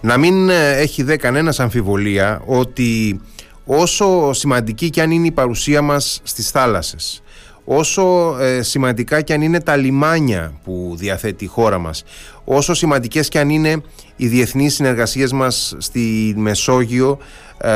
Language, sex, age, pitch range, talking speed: Greek, male, 30-49, 110-145 Hz, 135 wpm